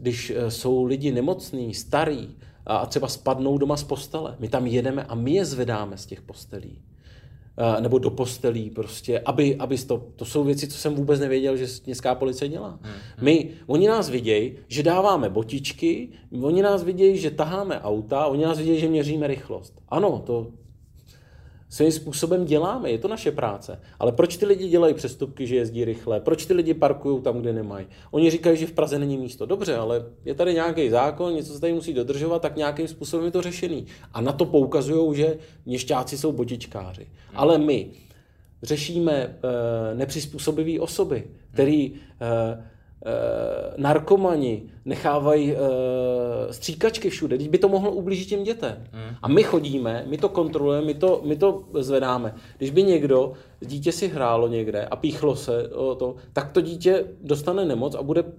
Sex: male